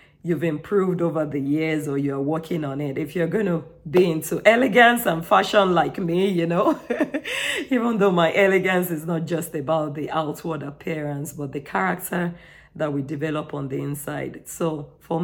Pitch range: 150-180 Hz